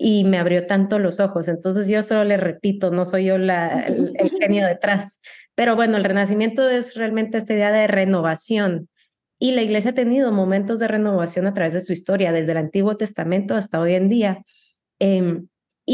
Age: 30-49